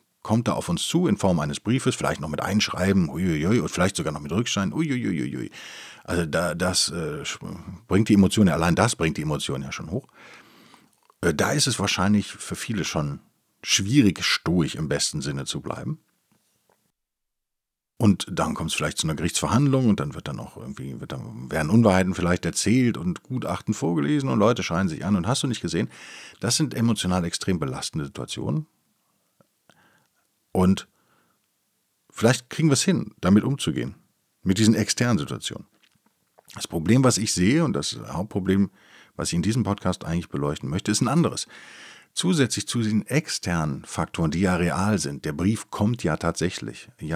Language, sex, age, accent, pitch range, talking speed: German, male, 50-69, German, 85-115 Hz, 170 wpm